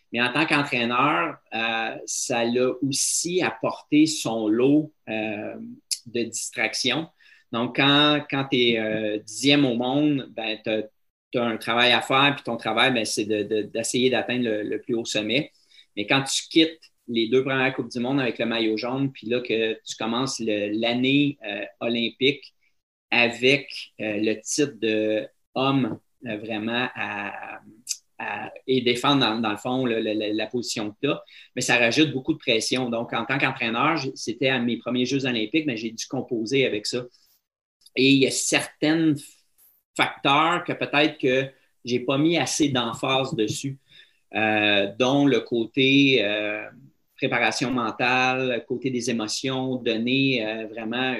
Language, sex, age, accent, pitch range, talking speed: French, male, 30-49, Canadian, 110-135 Hz, 160 wpm